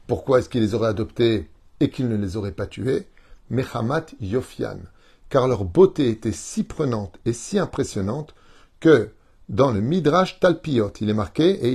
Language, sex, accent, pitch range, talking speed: French, male, French, 110-155 Hz, 170 wpm